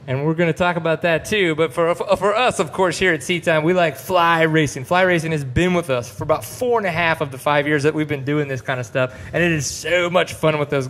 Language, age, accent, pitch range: English, 30-49, American, 130-160 Hz